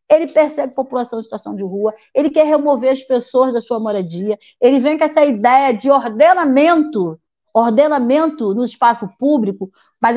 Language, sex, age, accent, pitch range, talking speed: Portuguese, female, 40-59, Brazilian, 240-300 Hz, 165 wpm